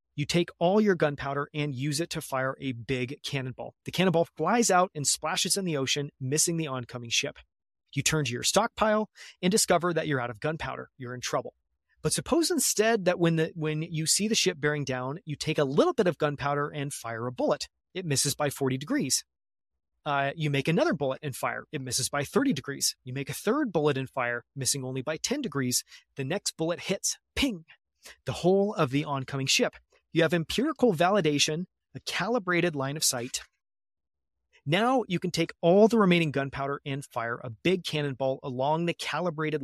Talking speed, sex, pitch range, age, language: 195 wpm, male, 135-180 Hz, 30-49, English